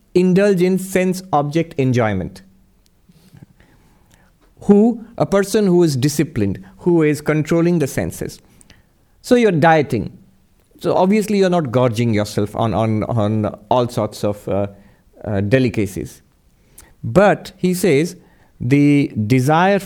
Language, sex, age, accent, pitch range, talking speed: English, male, 50-69, Indian, 110-180 Hz, 125 wpm